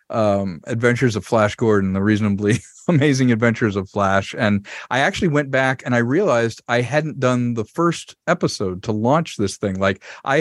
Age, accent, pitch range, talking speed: 40-59, American, 110-155 Hz, 180 wpm